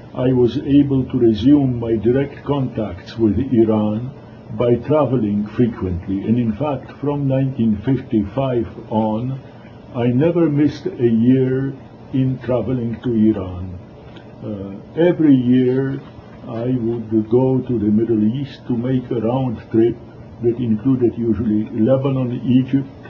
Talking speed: 125 wpm